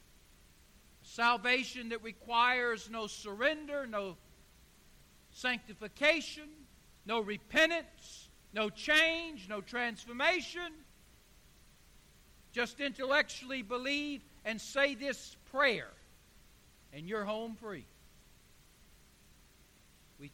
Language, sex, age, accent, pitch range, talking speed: English, male, 60-79, American, 190-270 Hz, 75 wpm